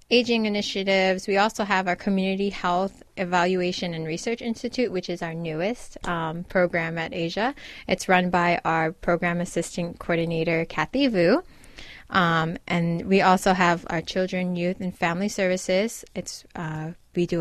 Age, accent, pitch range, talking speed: 20-39, American, 170-200 Hz, 150 wpm